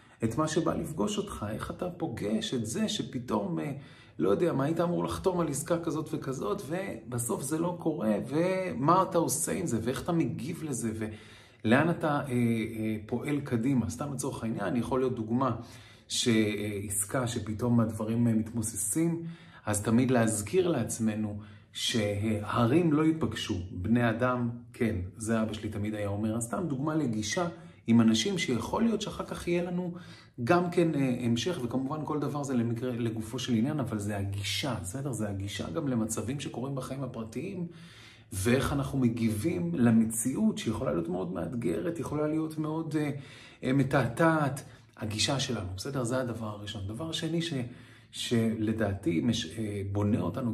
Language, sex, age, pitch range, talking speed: Hebrew, male, 30-49, 110-150 Hz, 145 wpm